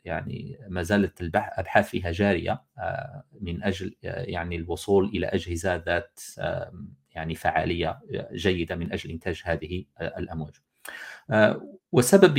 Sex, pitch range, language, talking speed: male, 90-120 Hz, Arabic, 105 wpm